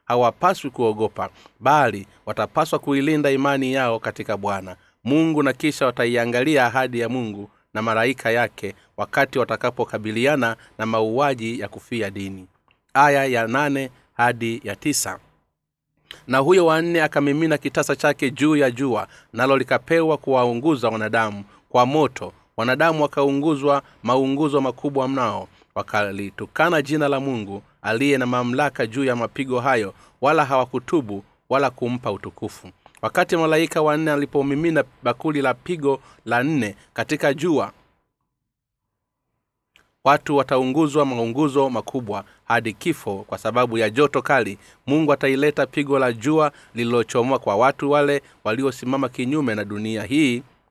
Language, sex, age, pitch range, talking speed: Swahili, male, 30-49, 110-145 Hz, 125 wpm